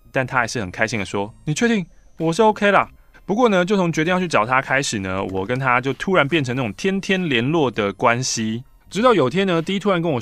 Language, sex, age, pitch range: Chinese, male, 20-39, 115-185 Hz